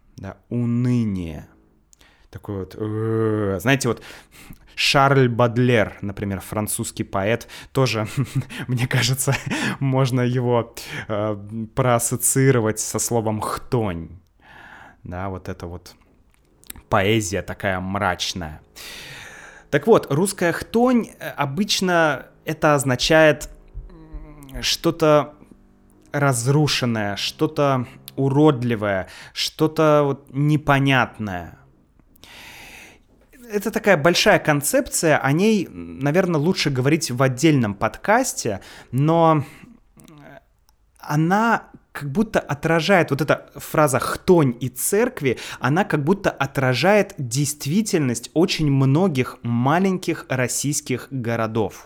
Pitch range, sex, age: 110-155 Hz, male, 20-39